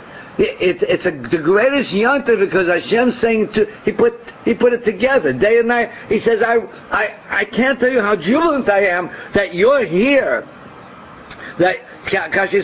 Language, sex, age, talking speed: English, male, 60-79, 165 wpm